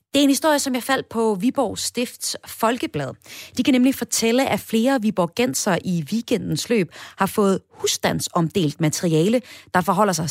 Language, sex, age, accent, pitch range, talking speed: Danish, female, 30-49, native, 165-225 Hz, 165 wpm